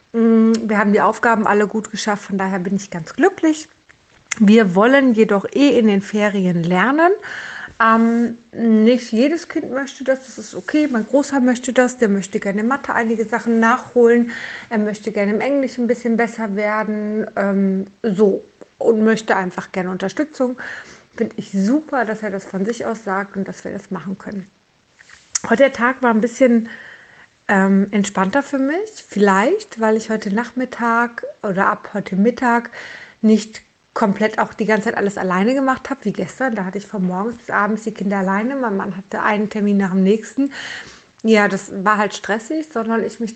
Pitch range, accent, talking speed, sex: 200-235 Hz, German, 180 wpm, female